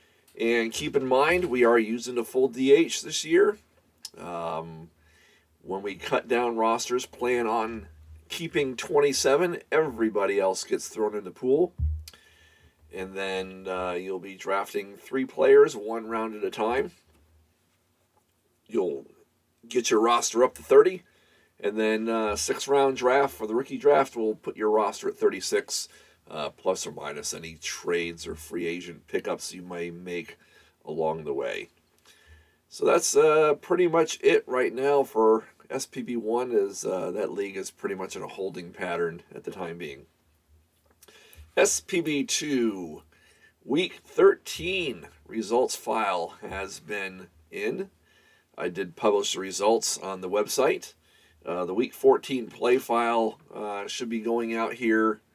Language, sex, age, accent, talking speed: English, male, 40-59, American, 145 wpm